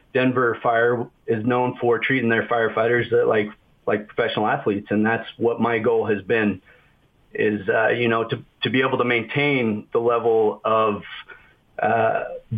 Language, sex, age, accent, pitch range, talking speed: English, male, 30-49, American, 105-120 Hz, 160 wpm